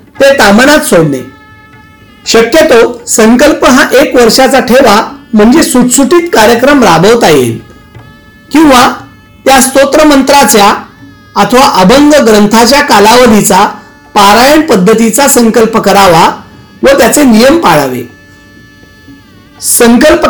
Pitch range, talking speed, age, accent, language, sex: 190-275 Hz, 90 wpm, 40-59, native, Marathi, male